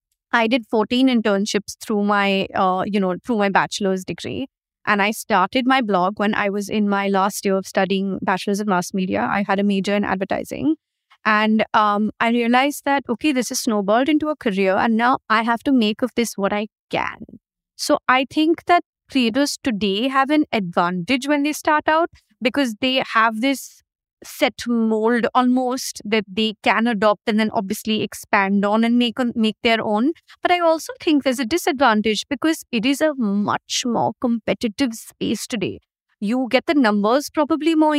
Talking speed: 185 wpm